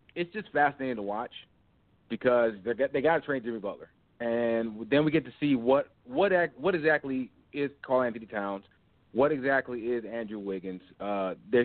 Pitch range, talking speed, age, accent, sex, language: 115-145 Hz, 165 wpm, 30-49, American, male, English